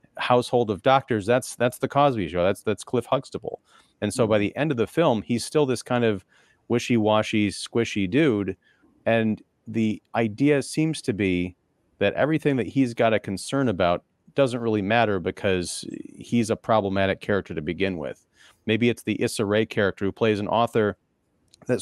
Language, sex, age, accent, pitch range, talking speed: English, male, 40-59, American, 95-120 Hz, 175 wpm